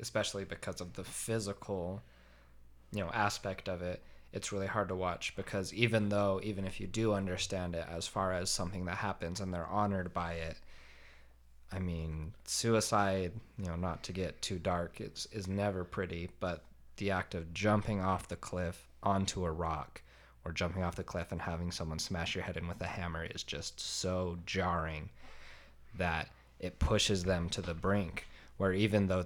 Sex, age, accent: male, 20-39, American